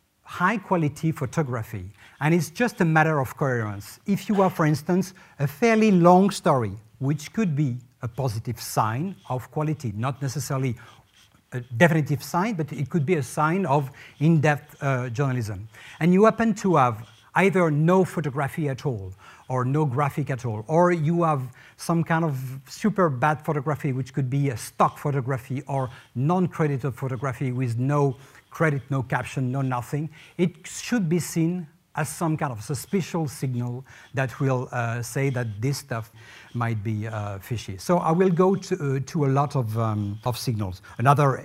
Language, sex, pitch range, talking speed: English, male, 125-165 Hz, 165 wpm